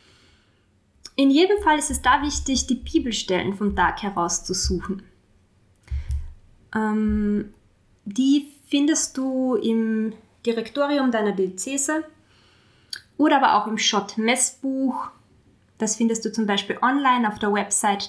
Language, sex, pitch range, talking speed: German, female, 200-260 Hz, 120 wpm